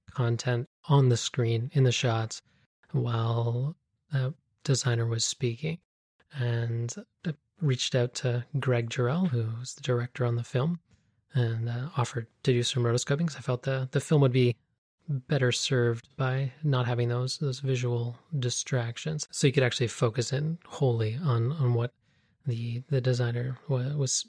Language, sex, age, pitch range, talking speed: English, male, 30-49, 120-145 Hz, 155 wpm